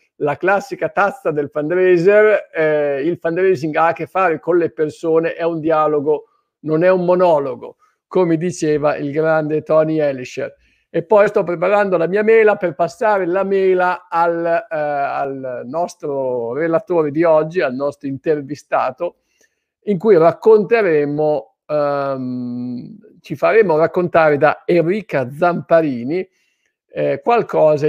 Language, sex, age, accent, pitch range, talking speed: Italian, male, 50-69, native, 145-185 Hz, 130 wpm